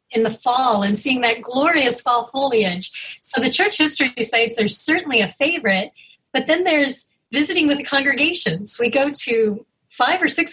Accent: American